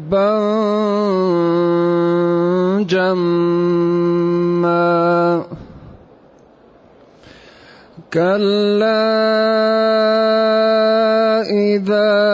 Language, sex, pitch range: Arabic, male, 175-220 Hz